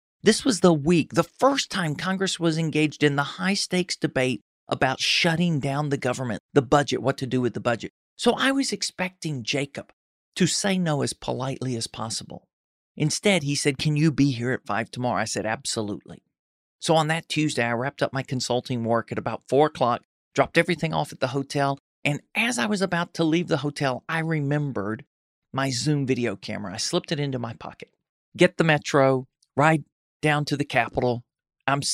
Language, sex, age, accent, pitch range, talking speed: English, male, 40-59, American, 130-165 Hz, 195 wpm